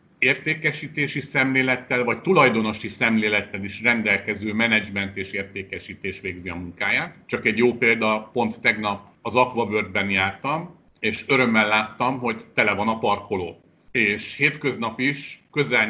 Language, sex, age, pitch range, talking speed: Hungarian, male, 50-69, 105-135 Hz, 125 wpm